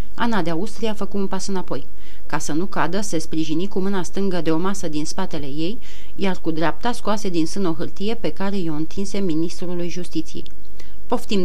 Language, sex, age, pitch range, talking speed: Romanian, female, 30-49, 160-195 Hz, 200 wpm